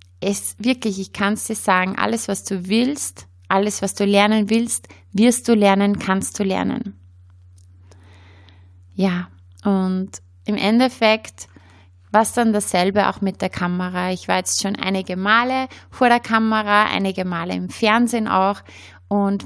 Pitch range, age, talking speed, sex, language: 180-225 Hz, 20-39, 150 wpm, female, German